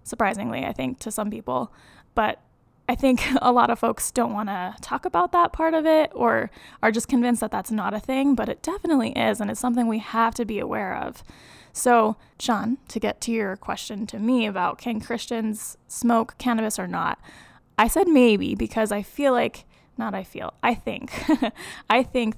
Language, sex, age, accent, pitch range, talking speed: English, female, 10-29, American, 220-265 Hz, 200 wpm